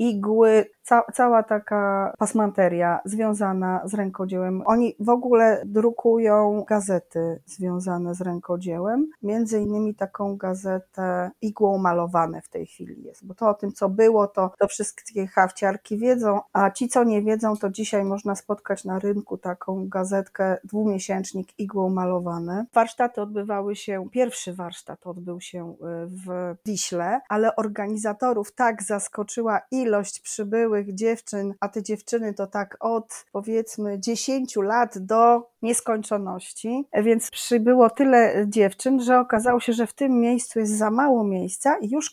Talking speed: 140 wpm